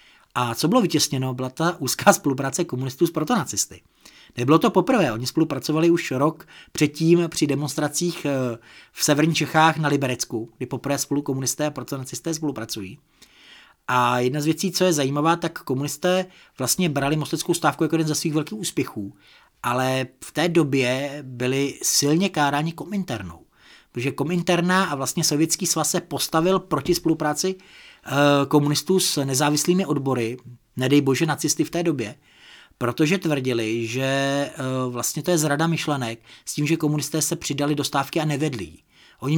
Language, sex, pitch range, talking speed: Czech, male, 130-160 Hz, 150 wpm